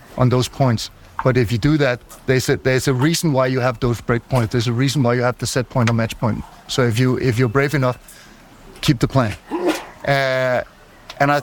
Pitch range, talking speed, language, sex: 135-155 Hz, 220 wpm, English, male